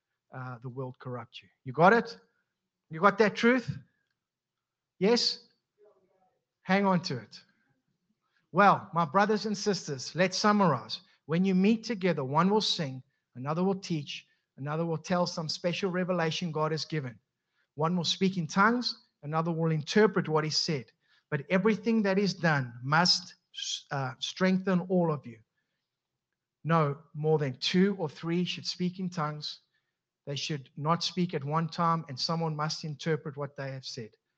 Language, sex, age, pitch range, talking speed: English, male, 50-69, 155-210 Hz, 155 wpm